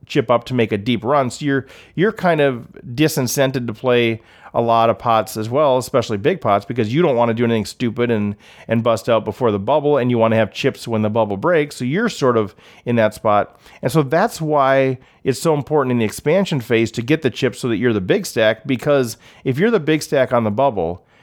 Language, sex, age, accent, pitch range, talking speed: English, male, 40-59, American, 110-140 Hz, 245 wpm